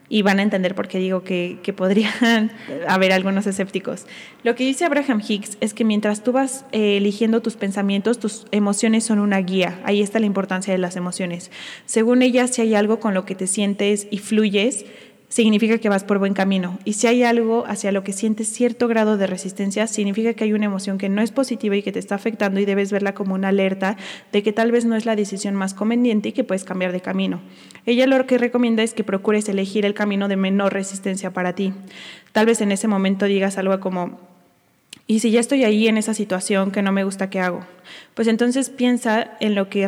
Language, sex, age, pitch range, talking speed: Spanish, female, 20-39, 195-220 Hz, 225 wpm